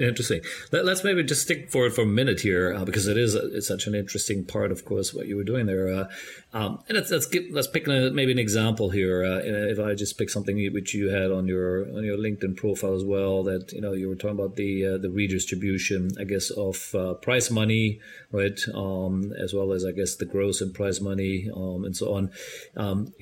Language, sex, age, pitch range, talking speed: English, male, 30-49, 95-110 Hz, 240 wpm